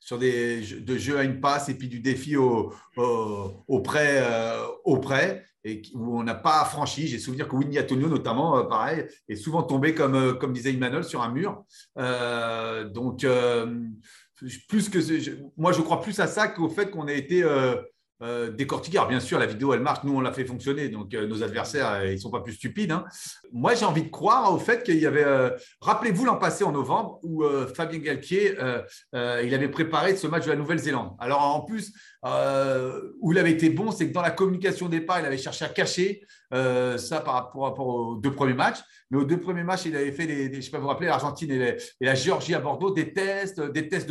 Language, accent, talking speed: French, French, 235 wpm